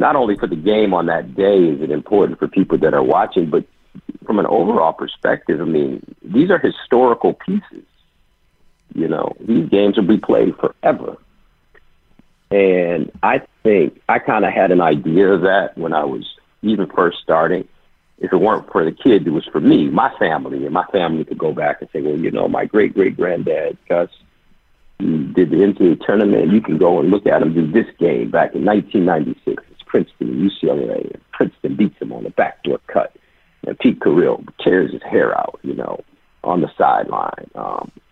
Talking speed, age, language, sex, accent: 190 wpm, 50-69, English, male, American